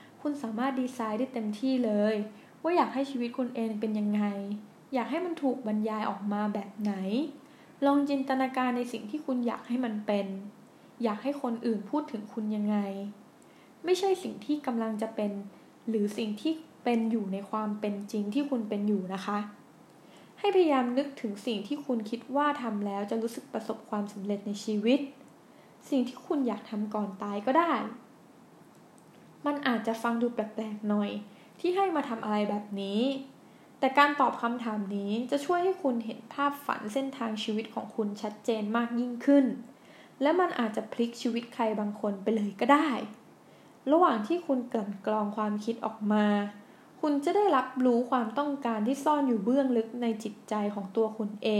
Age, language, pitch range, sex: 10-29, Thai, 210-270 Hz, female